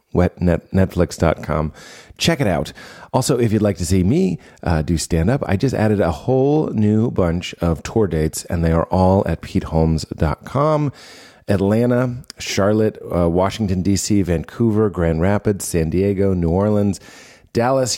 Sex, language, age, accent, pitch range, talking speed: male, English, 40-59, American, 90-115 Hz, 150 wpm